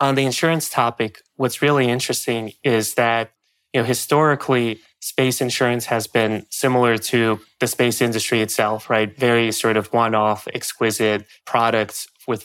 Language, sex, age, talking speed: English, male, 20-39, 145 wpm